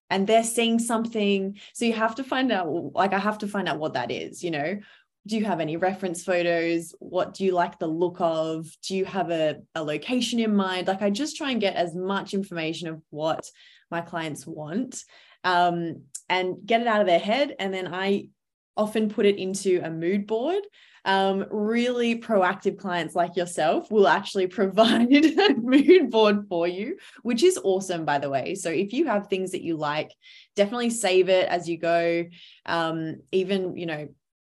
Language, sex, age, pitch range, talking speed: English, female, 20-39, 165-210 Hz, 195 wpm